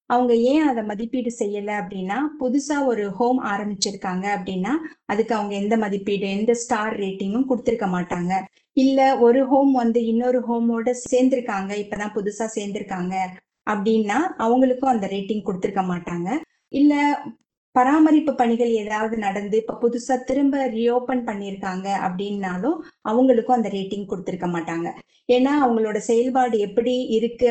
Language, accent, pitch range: Tamil, native, 200-250 Hz